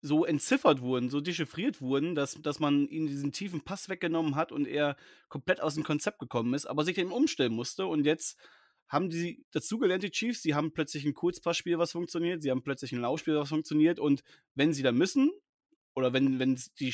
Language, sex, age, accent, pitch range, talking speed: German, male, 30-49, German, 135-170 Hz, 210 wpm